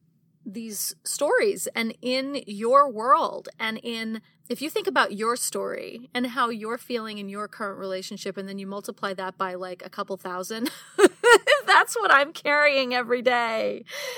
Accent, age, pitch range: American, 30-49, 195-250 Hz